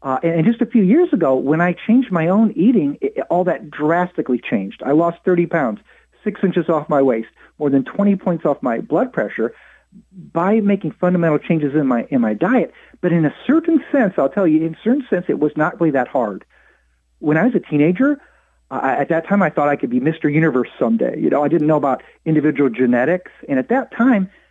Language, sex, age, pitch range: English, male, 40-59, 150-230 Hz